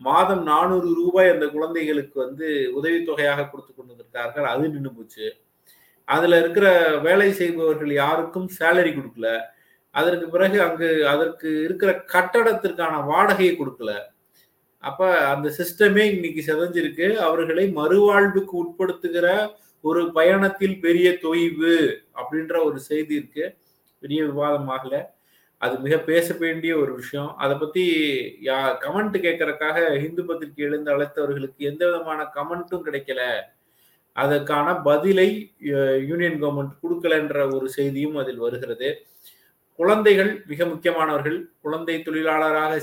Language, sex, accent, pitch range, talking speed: Tamil, male, native, 145-180 Hz, 110 wpm